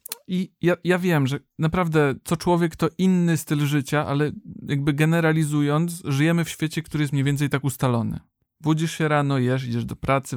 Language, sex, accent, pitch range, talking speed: Polish, male, native, 130-170 Hz, 180 wpm